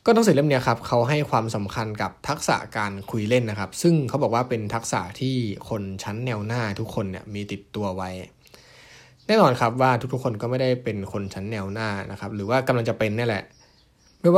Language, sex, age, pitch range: Thai, male, 20-39, 100-125 Hz